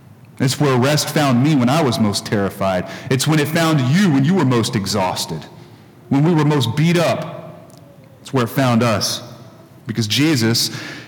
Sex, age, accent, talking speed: male, 40-59, American, 180 wpm